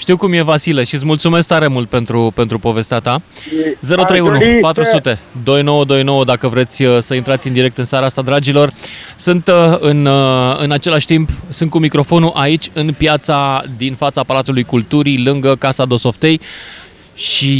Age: 20-39